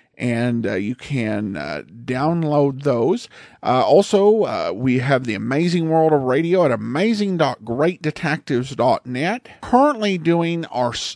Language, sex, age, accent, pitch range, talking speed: English, male, 50-69, American, 125-195 Hz, 120 wpm